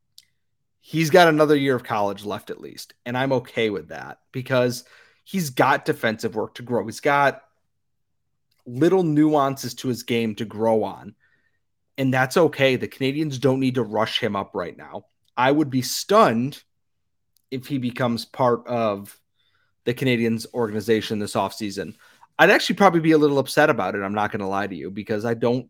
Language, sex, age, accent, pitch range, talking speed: English, male, 30-49, American, 110-140 Hz, 180 wpm